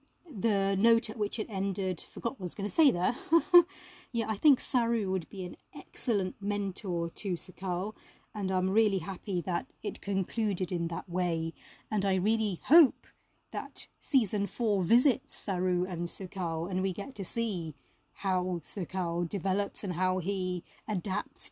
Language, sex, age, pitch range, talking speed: English, female, 30-49, 180-235 Hz, 160 wpm